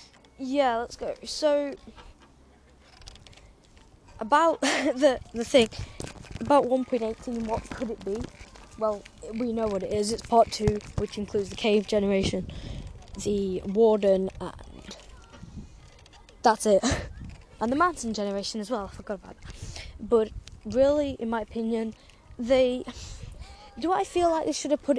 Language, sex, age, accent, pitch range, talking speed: English, female, 10-29, British, 200-265 Hz, 135 wpm